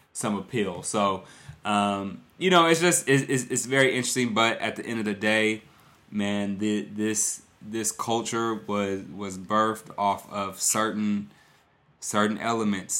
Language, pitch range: English, 95-110 Hz